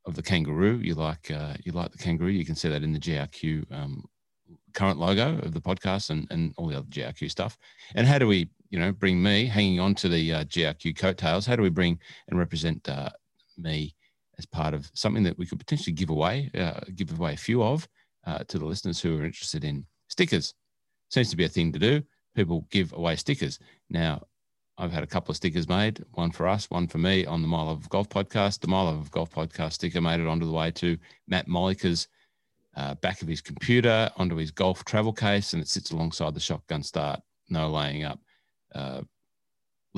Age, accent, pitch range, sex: 40-59, Australian, 80-95 Hz, male